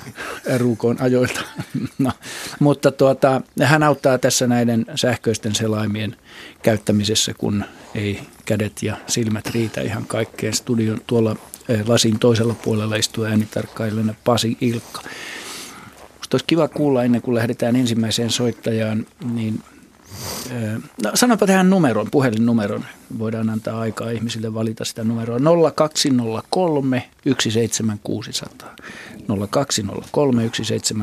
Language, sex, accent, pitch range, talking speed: Finnish, male, native, 110-130 Hz, 100 wpm